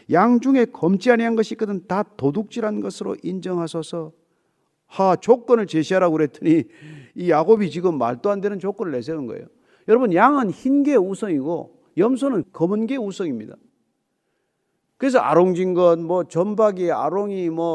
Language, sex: Korean, male